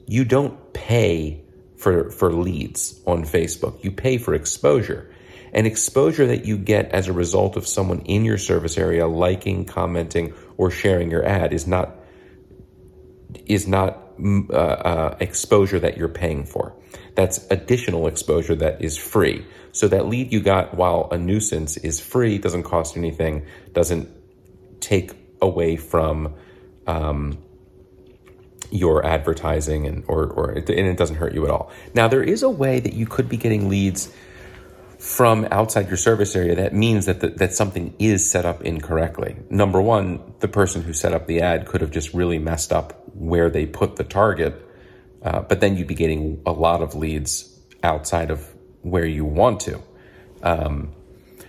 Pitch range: 85-100 Hz